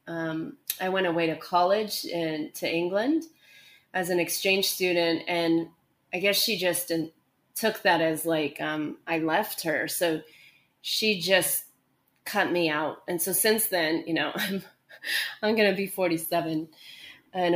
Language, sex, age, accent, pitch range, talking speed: English, female, 20-39, American, 165-200 Hz, 155 wpm